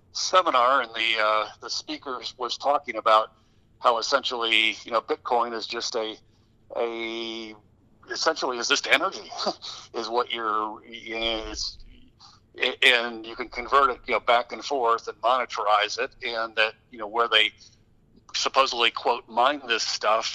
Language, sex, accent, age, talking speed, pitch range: English, male, American, 50-69, 155 wpm, 110-135 Hz